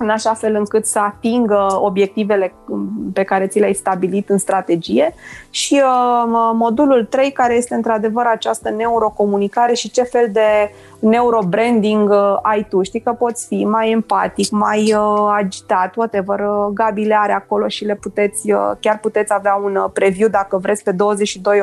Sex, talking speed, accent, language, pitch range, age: female, 150 wpm, native, Romanian, 195-220 Hz, 20-39